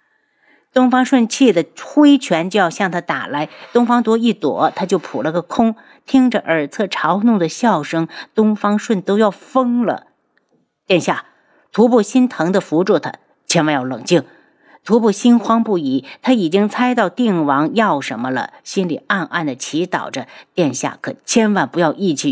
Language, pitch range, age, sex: Chinese, 170-245 Hz, 50-69, female